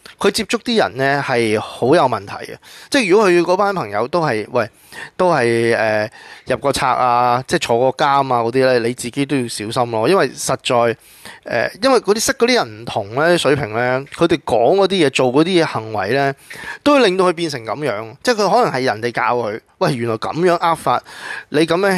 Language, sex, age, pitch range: Chinese, male, 20-39, 120-170 Hz